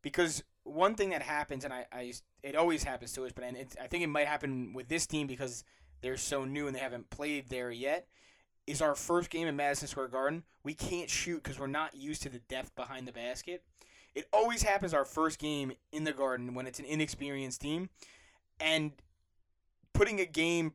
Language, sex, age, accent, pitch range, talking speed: English, male, 20-39, American, 130-160 Hz, 210 wpm